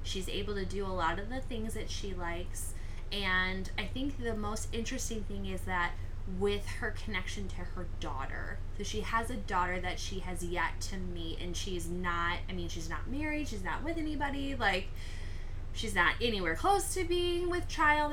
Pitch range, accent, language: 90-100 Hz, American, English